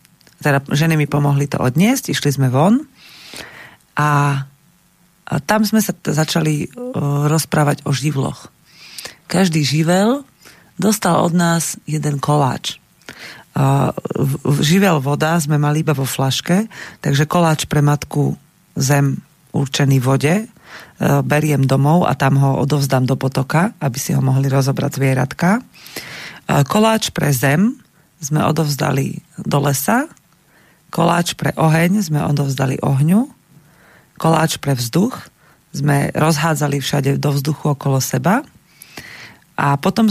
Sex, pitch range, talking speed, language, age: female, 140-170 Hz, 125 wpm, Slovak, 40-59